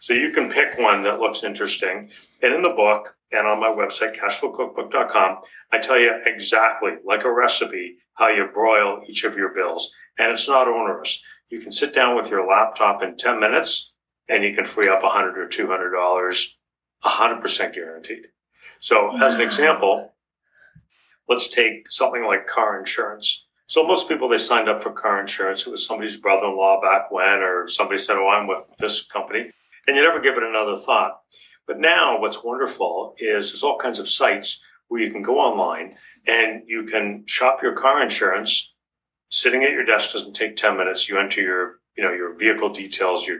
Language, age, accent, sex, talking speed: English, 60-79, American, male, 185 wpm